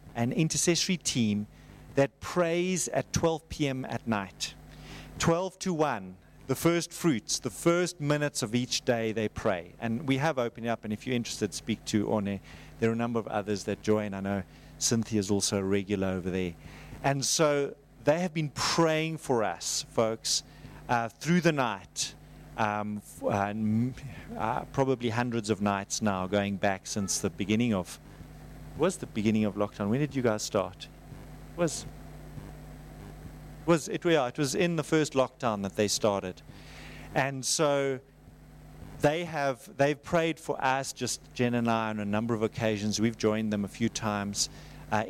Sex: male